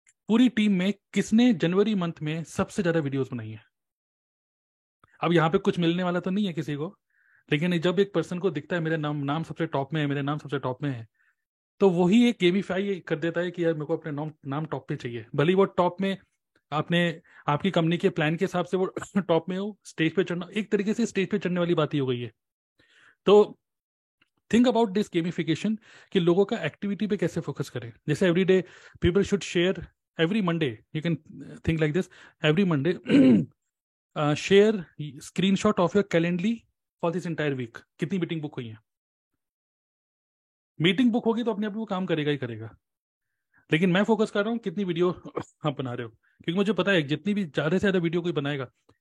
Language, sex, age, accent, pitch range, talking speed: Hindi, male, 30-49, native, 150-200 Hz, 195 wpm